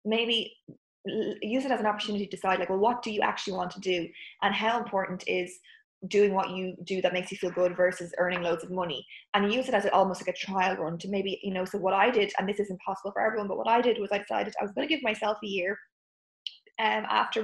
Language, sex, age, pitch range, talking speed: English, female, 20-39, 205-235 Hz, 260 wpm